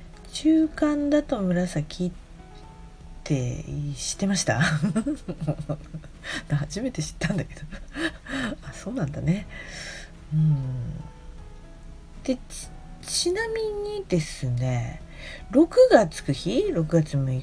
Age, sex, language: 40-59, female, Japanese